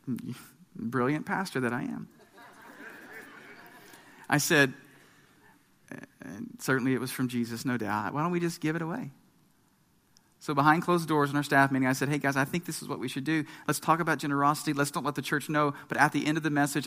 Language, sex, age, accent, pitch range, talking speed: English, male, 40-59, American, 130-155 Hz, 205 wpm